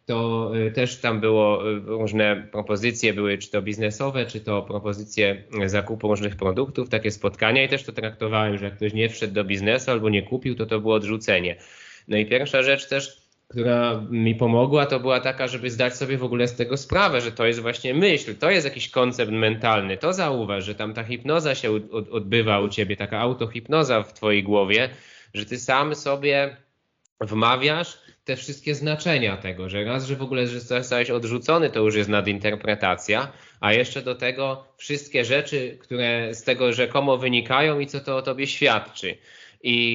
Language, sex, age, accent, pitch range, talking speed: Polish, male, 20-39, native, 110-130 Hz, 175 wpm